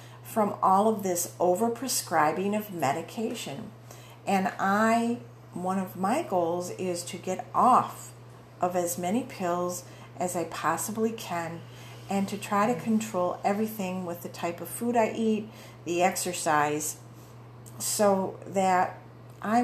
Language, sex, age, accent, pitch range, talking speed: English, female, 50-69, American, 125-190 Hz, 130 wpm